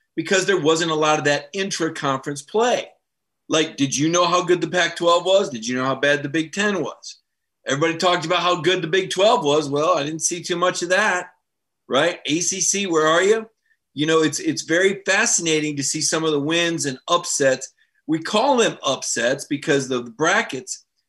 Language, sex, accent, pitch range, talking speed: English, male, American, 135-180 Hz, 200 wpm